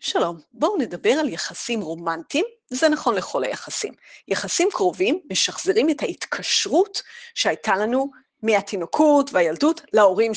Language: Hebrew